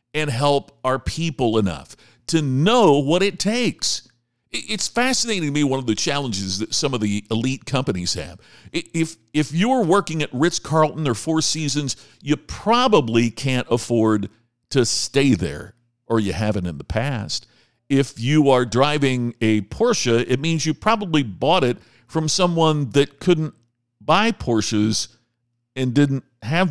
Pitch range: 120-170 Hz